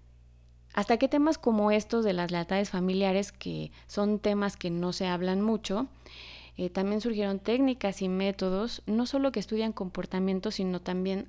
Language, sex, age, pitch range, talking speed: Spanish, female, 20-39, 170-230 Hz, 160 wpm